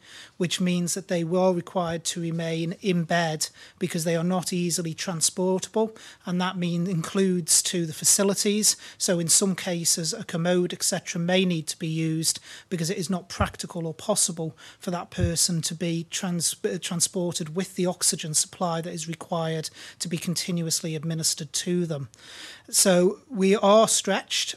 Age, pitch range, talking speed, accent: 30-49, 160-185 Hz, 160 wpm, British